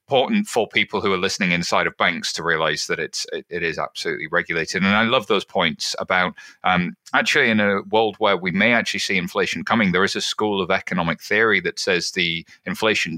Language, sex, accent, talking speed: English, male, British, 210 wpm